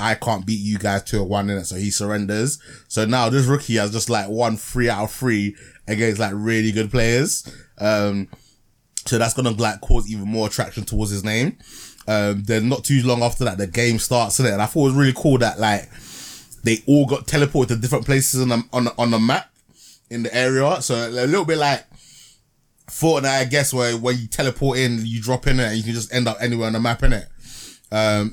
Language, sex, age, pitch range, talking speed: English, male, 20-39, 105-125 Hz, 235 wpm